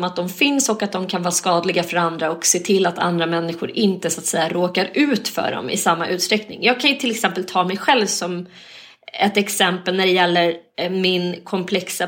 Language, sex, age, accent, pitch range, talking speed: Swedish, female, 30-49, native, 175-230 Hz, 200 wpm